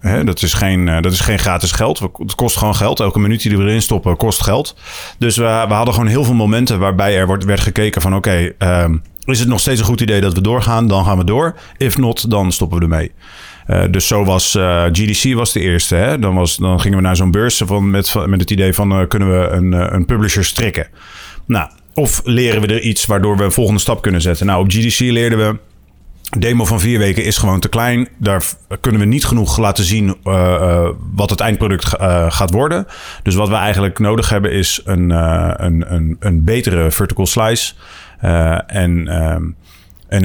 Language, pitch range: Dutch, 90-110 Hz